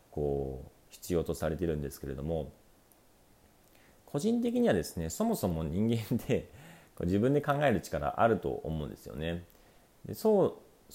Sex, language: male, Japanese